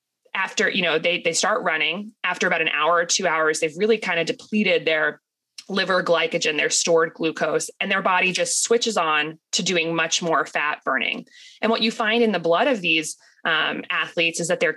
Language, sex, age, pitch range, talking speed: English, female, 20-39, 165-225 Hz, 205 wpm